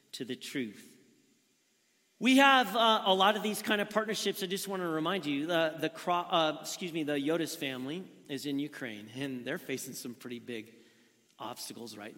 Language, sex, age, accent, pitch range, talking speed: English, male, 40-59, American, 135-180 Hz, 190 wpm